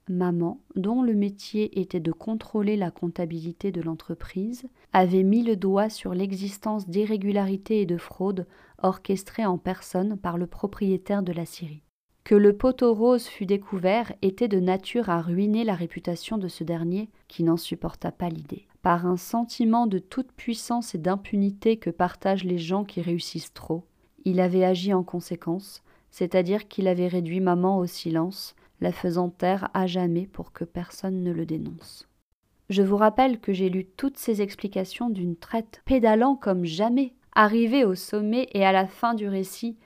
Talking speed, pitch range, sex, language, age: 170 wpm, 180-220 Hz, female, French, 30-49